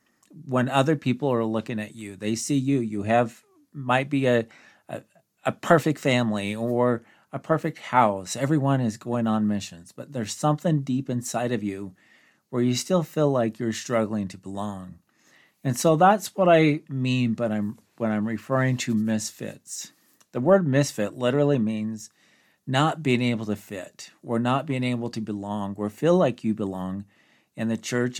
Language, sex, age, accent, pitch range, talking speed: English, male, 40-59, American, 110-140 Hz, 170 wpm